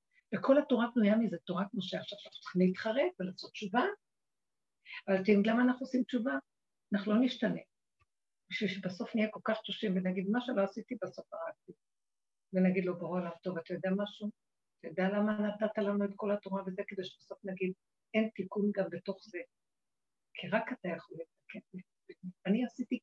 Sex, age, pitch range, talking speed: female, 60-79, 200-260 Hz, 165 wpm